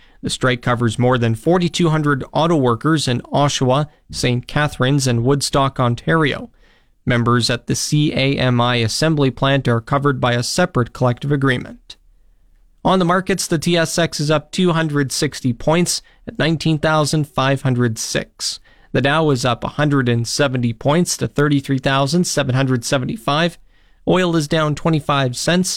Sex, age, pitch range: male, 40-59, 125-170 Hz